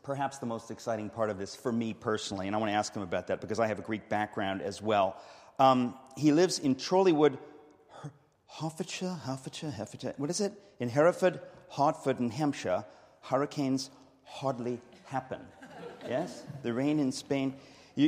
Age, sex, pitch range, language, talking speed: 40-59, male, 120-165 Hz, English, 175 wpm